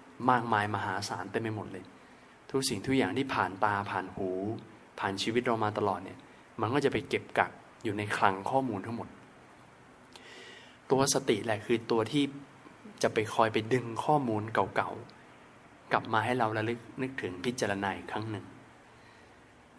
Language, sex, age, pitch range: Thai, male, 20-39, 100-125 Hz